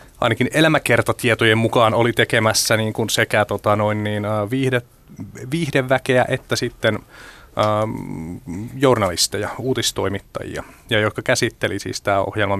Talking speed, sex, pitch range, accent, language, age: 115 wpm, male, 100-120 Hz, native, Finnish, 30-49